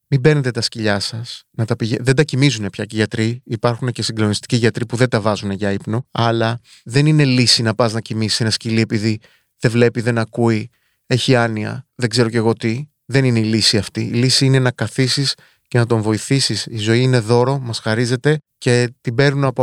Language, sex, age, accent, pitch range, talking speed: Greek, male, 30-49, native, 115-135 Hz, 215 wpm